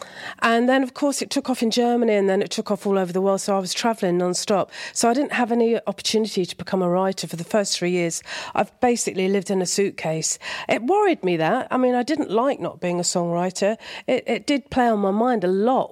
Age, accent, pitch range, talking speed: 40-59, British, 185-230 Hz, 250 wpm